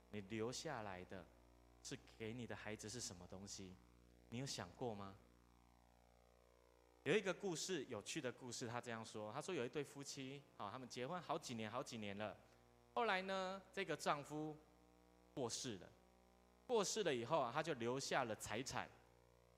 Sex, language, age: male, Chinese, 20-39